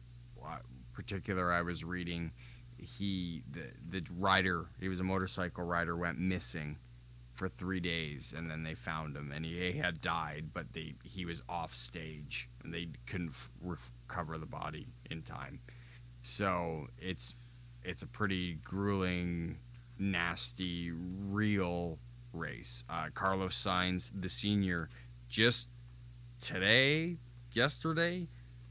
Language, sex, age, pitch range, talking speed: English, male, 30-49, 85-120 Hz, 125 wpm